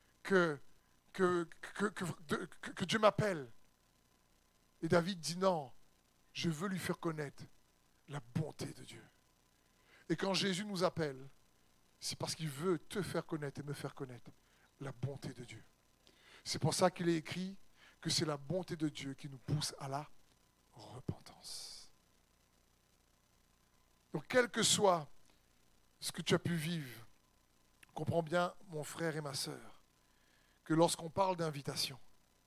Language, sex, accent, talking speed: French, male, French, 140 wpm